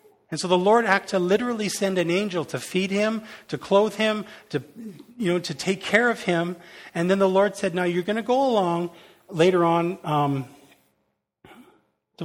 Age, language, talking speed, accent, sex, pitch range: 40-59, English, 190 wpm, American, male, 150-190 Hz